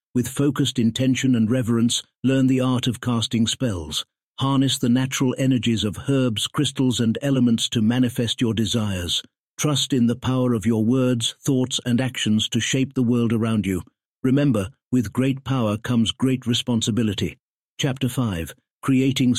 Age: 60-79